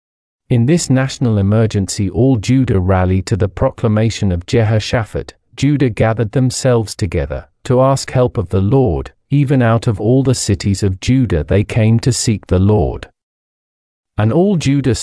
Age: 40-59